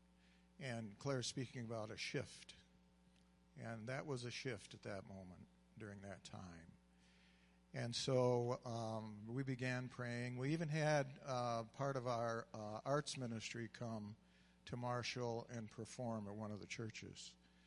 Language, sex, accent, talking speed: English, male, American, 145 wpm